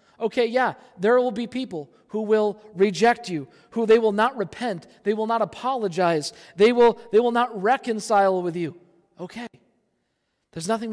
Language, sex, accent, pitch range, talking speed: English, male, American, 160-215 Hz, 160 wpm